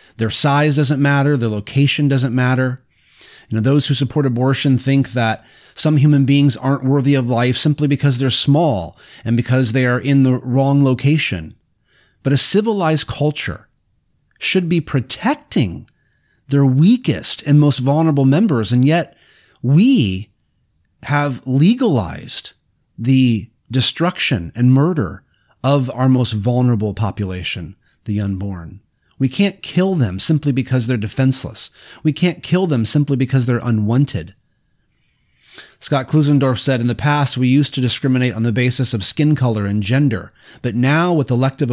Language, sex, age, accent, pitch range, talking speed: English, male, 30-49, American, 115-145 Hz, 145 wpm